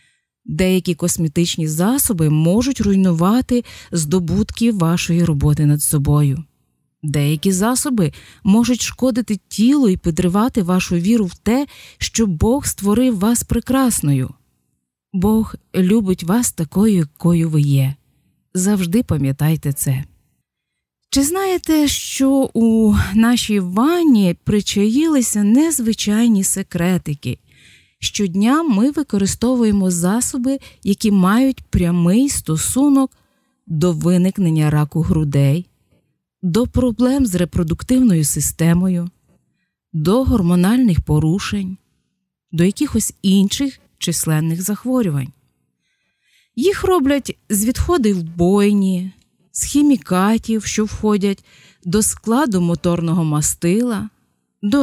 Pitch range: 170-235 Hz